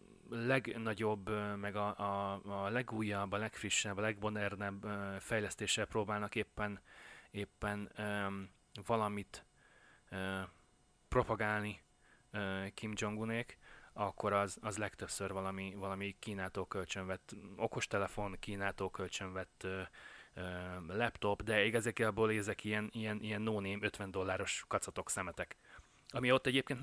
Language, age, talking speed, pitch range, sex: Hungarian, 30-49, 110 wpm, 100-110 Hz, male